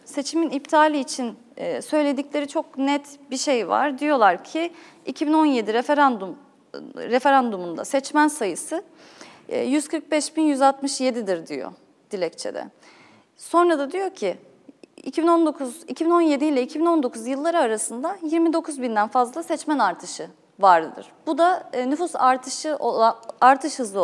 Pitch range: 240-310 Hz